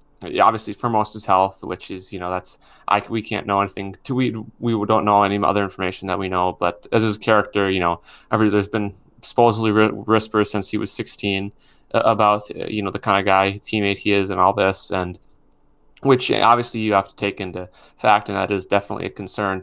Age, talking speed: 20-39, 215 wpm